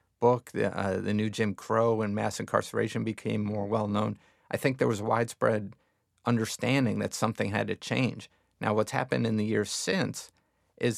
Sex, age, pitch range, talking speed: male, 50-69, 100-115 Hz, 180 wpm